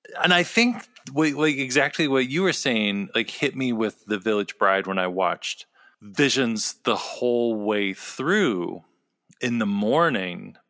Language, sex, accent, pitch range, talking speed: English, male, American, 100-140 Hz, 150 wpm